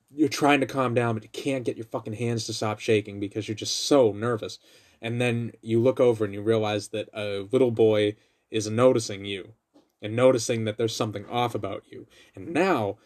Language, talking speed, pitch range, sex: English, 205 wpm, 110-135 Hz, male